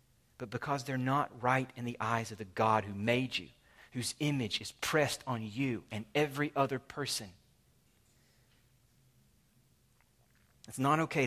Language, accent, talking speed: English, American, 145 wpm